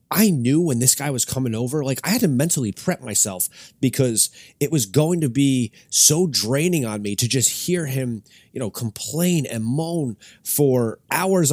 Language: English